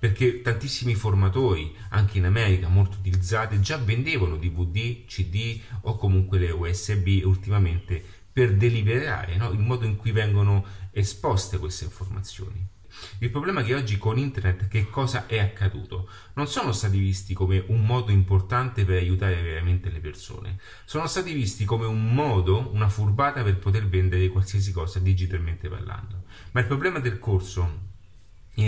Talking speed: 155 wpm